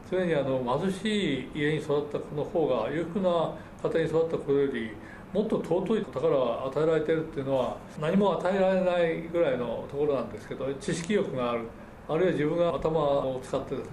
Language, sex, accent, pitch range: Japanese, male, native, 145-195 Hz